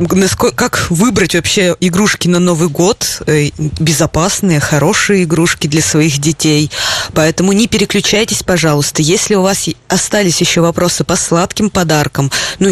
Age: 20-39